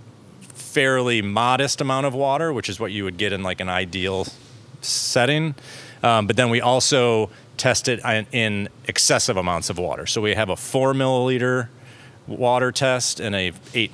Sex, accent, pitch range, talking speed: male, American, 105-130 Hz, 170 wpm